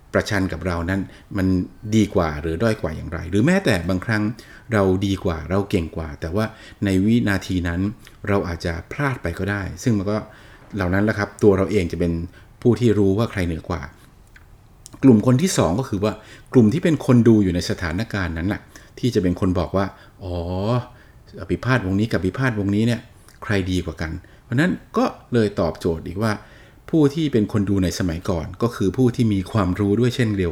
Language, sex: Thai, male